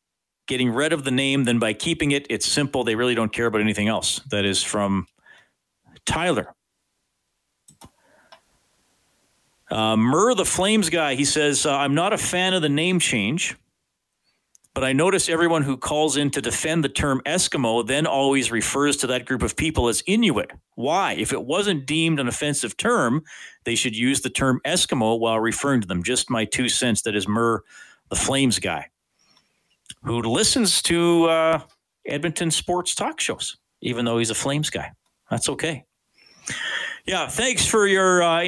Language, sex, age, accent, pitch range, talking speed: English, male, 40-59, American, 115-170 Hz, 170 wpm